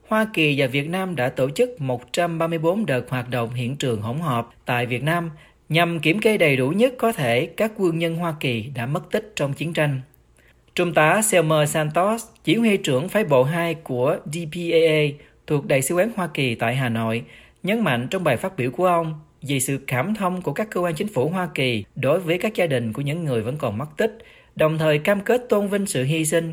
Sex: male